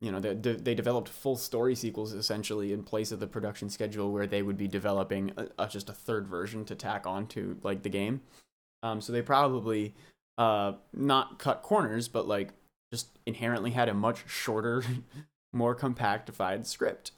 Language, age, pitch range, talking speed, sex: English, 20-39, 100-135 Hz, 180 wpm, male